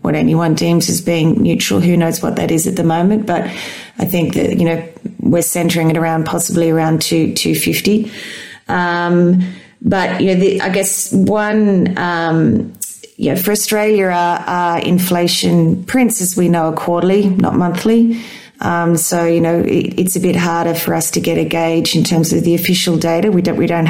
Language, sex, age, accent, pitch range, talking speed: English, female, 30-49, Australian, 165-190 Hz, 190 wpm